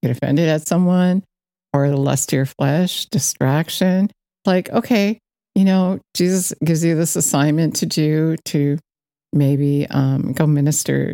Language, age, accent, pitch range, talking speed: English, 60-79, American, 145-175 Hz, 140 wpm